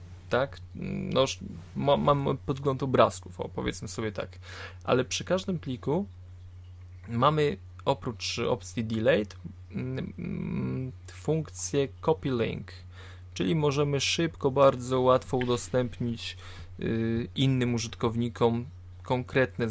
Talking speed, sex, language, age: 90 wpm, male, Polish, 20-39